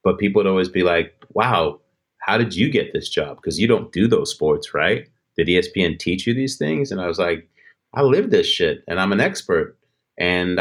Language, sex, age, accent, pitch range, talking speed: English, male, 30-49, American, 95-150 Hz, 220 wpm